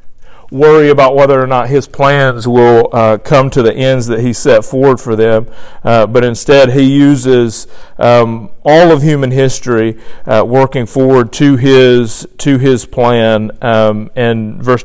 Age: 40-59